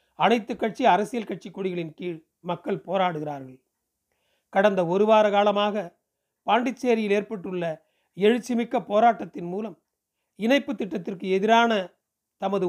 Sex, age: male, 40-59